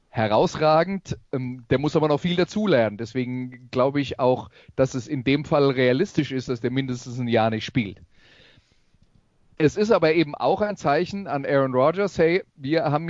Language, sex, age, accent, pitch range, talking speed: German, male, 30-49, German, 125-155 Hz, 180 wpm